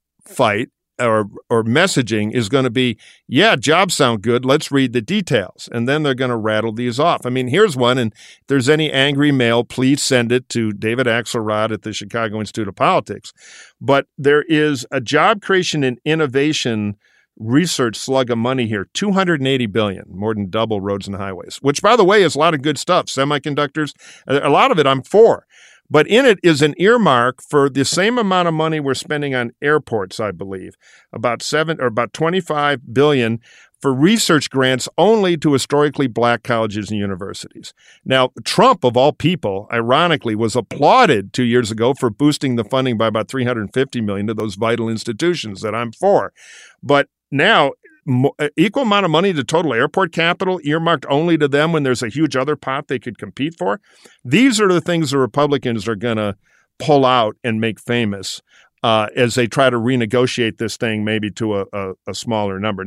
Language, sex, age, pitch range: English, male, 50-69, 115-150 Hz